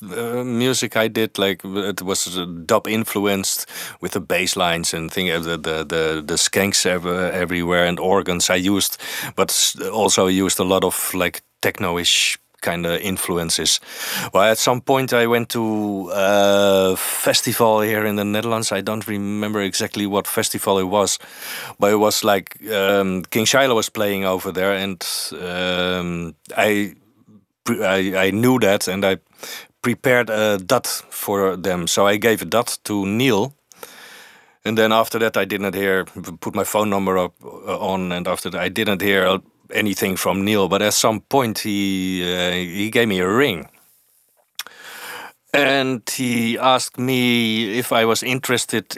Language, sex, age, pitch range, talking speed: English, male, 40-59, 95-110 Hz, 165 wpm